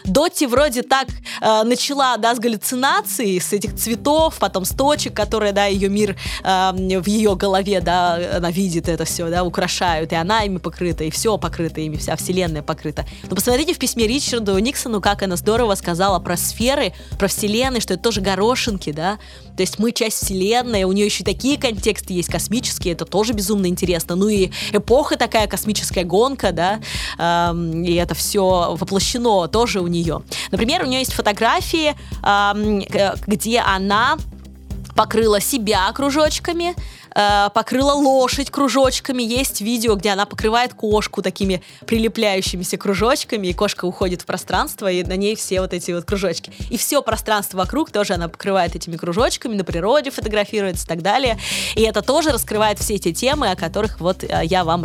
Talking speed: 170 wpm